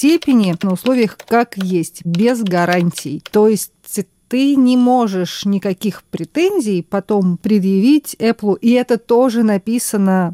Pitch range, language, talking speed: 190-240 Hz, Russian, 115 wpm